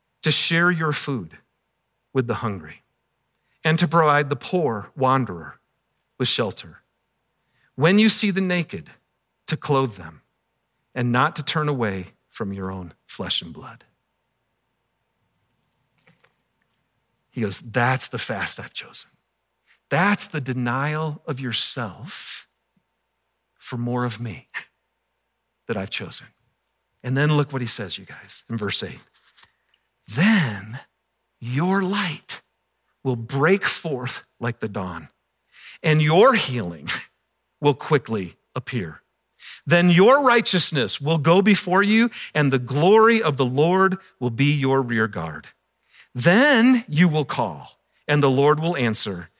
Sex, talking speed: male, 130 wpm